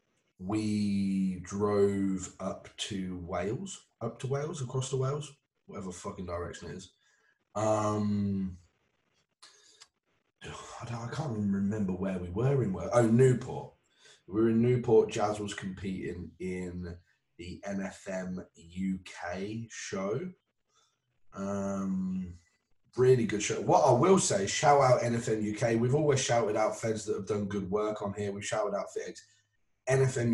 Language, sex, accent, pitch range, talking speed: English, male, British, 100-140 Hz, 140 wpm